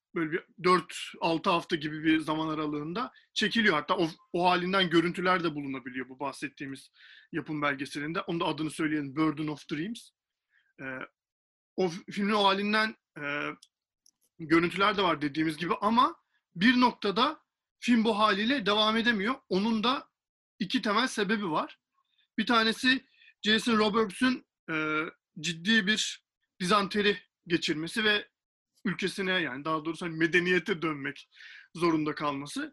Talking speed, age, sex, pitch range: 125 wpm, 40-59, male, 160-220 Hz